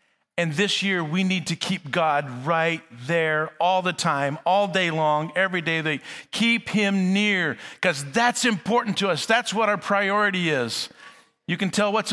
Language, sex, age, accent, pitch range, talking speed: English, male, 50-69, American, 135-175 Hz, 180 wpm